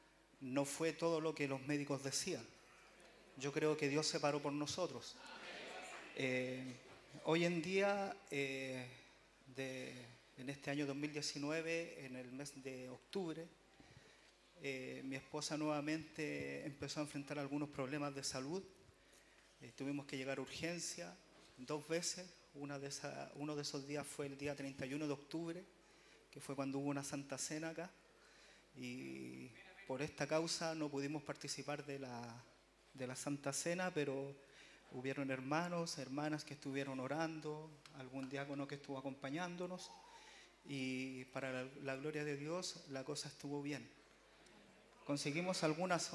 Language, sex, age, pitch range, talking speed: Spanish, male, 30-49, 135-160 Hz, 140 wpm